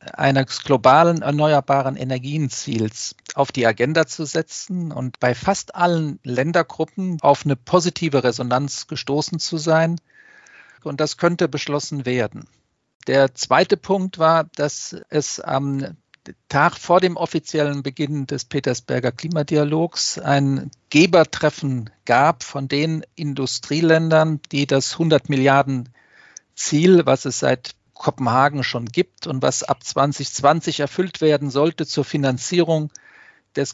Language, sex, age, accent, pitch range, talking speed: German, male, 50-69, German, 135-165 Hz, 120 wpm